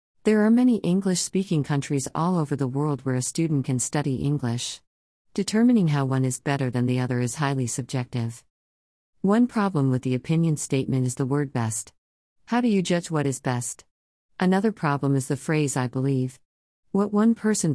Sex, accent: female, American